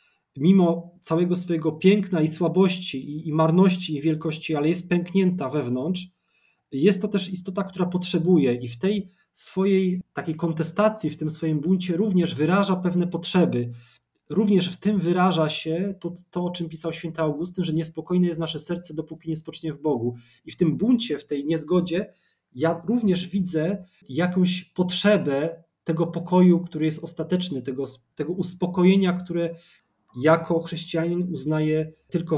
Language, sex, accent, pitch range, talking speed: Polish, male, native, 150-180 Hz, 150 wpm